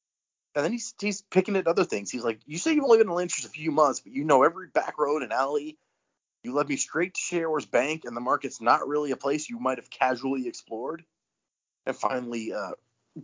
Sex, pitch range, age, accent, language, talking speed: male, 120-155 Hz, 30-49, American, English, 225 wpm